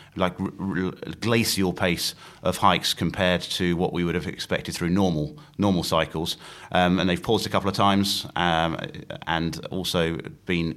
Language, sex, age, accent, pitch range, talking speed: English, male, 30-49, British, 85-105 Hz, 155 wpm